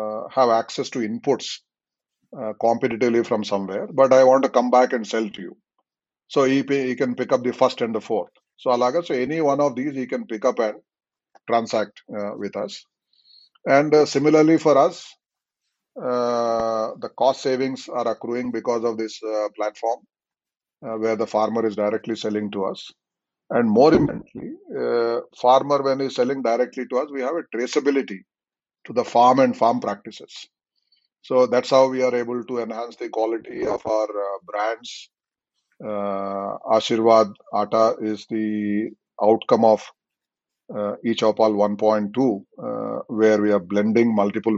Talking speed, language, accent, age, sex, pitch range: 165 wpm, Telugu, native, 30-49, male, 105-125 Hz